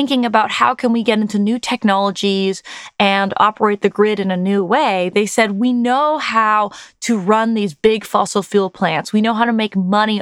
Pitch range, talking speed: 205-260 Hz, 205 wpm